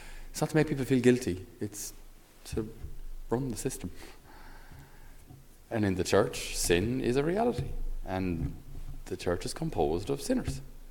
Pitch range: 95-130 Hz